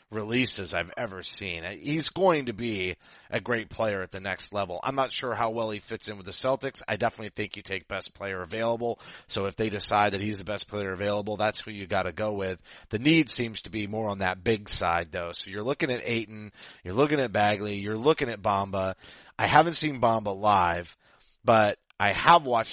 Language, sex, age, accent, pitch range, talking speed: English, male, 30-49, American, 95-120 Hz, 220 wpm